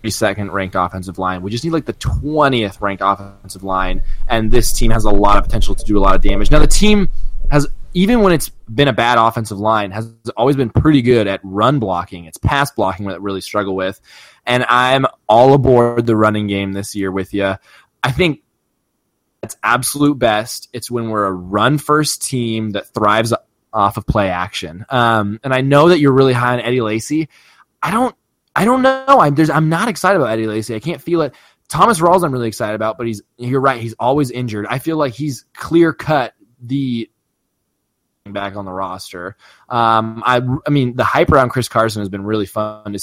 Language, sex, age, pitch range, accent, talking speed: English, male, 20-39, 105-140 Hz, American, 210 wpm